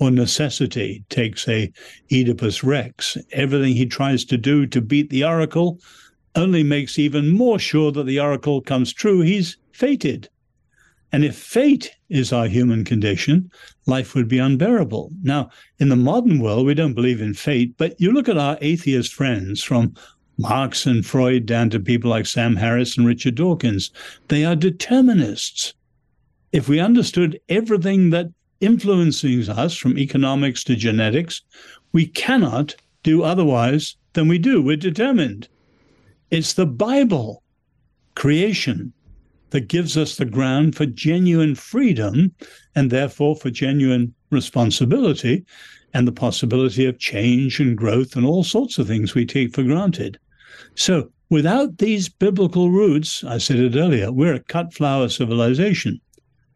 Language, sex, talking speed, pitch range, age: English, male, 145 wpm, 125-170 Hz, 60-79